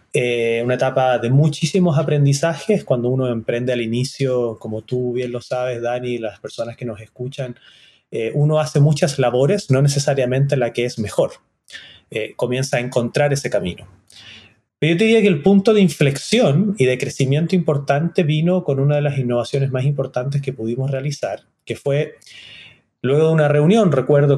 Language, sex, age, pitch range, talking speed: Spanish, male, 30-49, 125-155 Hz, 170 wpm